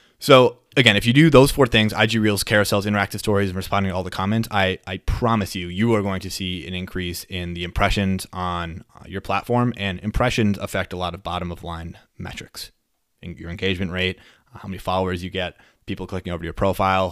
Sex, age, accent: male, 20-39, American